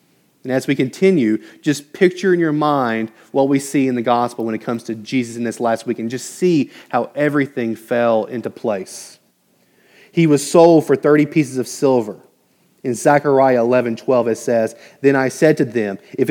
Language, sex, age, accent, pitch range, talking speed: English, male, 30-49, American, 120-145 Hz, 195 wpm